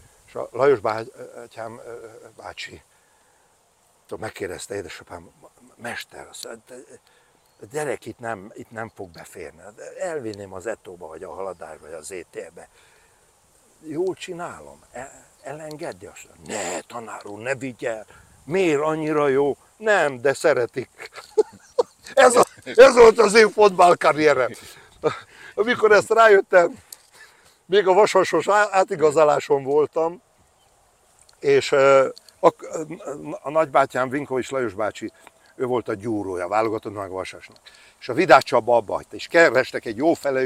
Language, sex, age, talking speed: Hungarian, male, 60-79, 110 wpm